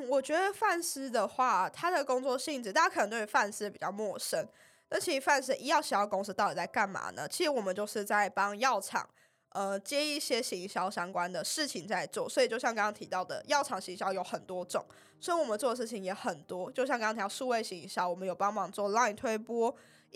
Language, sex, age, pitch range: Chinese, female, 10-29, 195-275 Hz